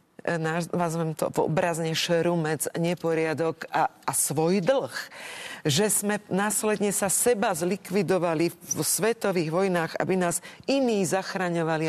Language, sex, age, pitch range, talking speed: Czech, female, 40-59, 165-205 Hz, 110 wpm